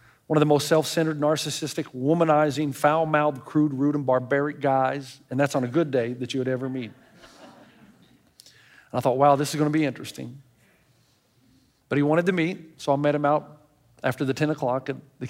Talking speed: 195 wpm